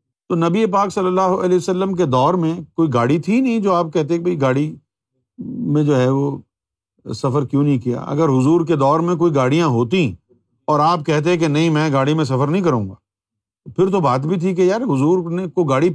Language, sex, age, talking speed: Urdu, male, 50-69, 220 wpm